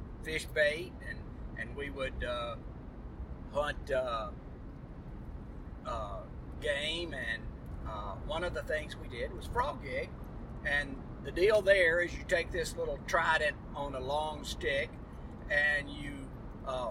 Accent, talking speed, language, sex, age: American, 140 wpm, English, male, 50-69